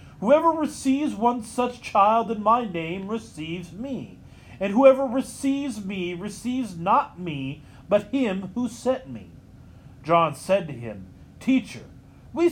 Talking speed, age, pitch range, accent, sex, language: 135 wpm, 40-59, 175-250 Hz, American, male, English